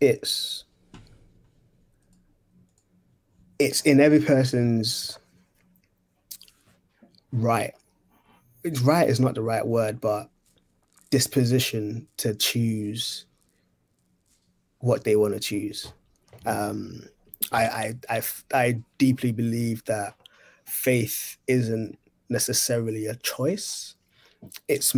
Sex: male